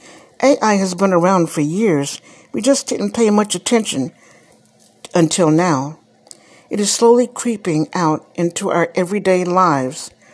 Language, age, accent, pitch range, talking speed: English, 60-79, American, 160-220 Hz, 135 wpm